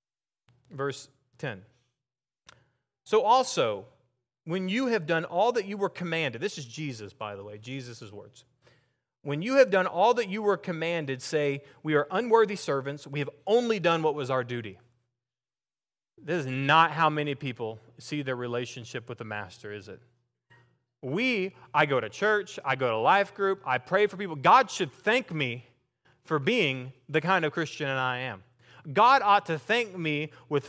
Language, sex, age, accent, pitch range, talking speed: English, male, 30-49, American, 125-185 Hz, 175 wpm